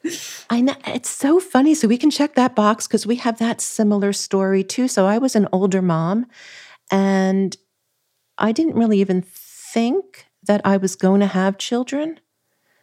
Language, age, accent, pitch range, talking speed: English, 40-59, American, 155-205 Hz, 175 wpm